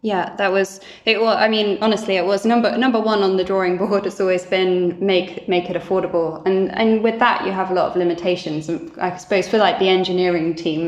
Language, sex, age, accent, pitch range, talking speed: English, female, 10-29, British, 165-190 Hz, 230 wpm